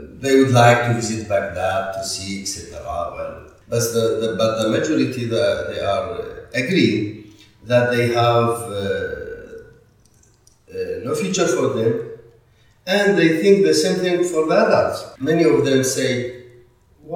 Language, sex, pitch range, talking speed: English, male, 110-140 Hz, 145 wpm